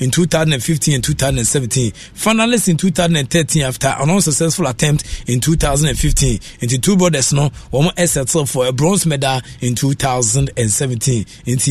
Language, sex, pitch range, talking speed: English, male, 125-160 Hz, 140 wpm